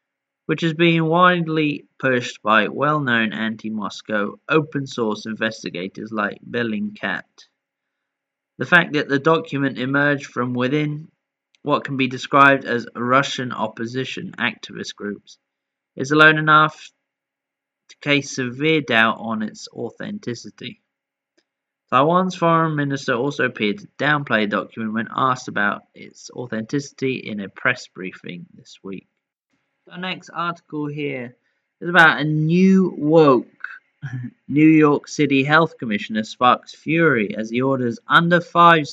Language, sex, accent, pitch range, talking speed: English, male, British, 115-150 Hz, 125 wpm